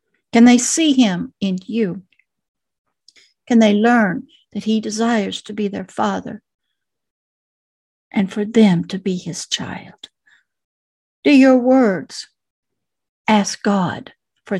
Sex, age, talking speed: female, 60-79, 120 wpm